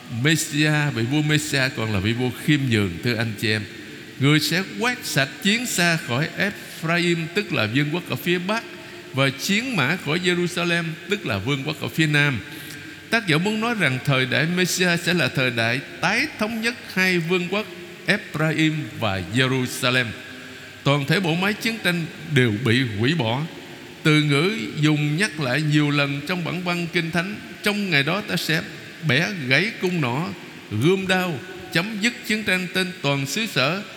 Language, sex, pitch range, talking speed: Vietnamese, male, 140-185 Hz, 180 wpm